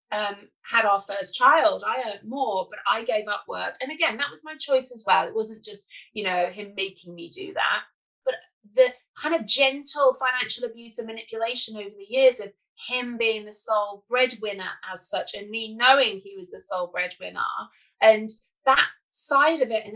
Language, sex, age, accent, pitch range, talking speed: English, female, 30-49, British, 210-280 Hz, 190 wpm